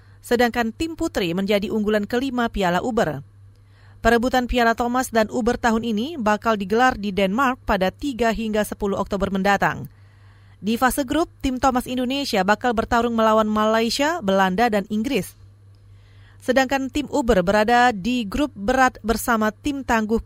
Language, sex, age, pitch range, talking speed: Indonesian, female, 30-49, 195-260 Hz, 140 wpm